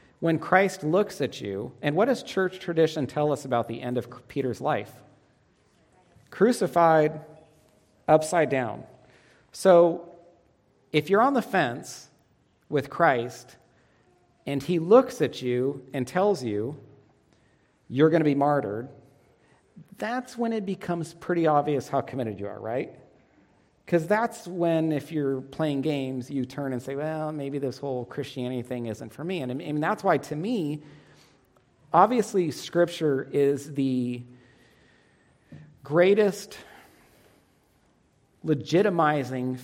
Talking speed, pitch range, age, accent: 130 wpm, 130-170 Hz, 40-59, American